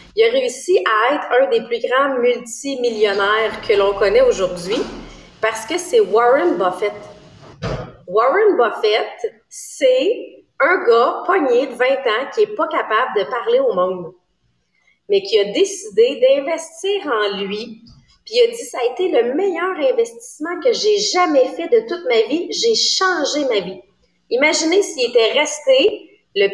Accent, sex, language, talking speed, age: Canadian, female, English, 165 wpm, 30-49